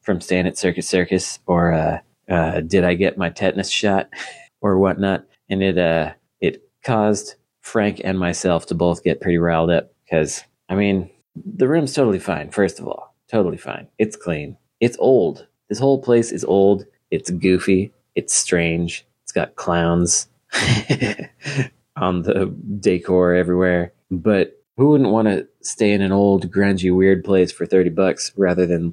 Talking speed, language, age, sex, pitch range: 165 wpm, English, 30-49, male, 85-100 Hz